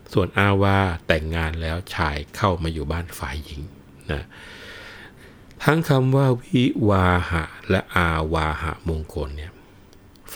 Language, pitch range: Thai, 80-100 Hz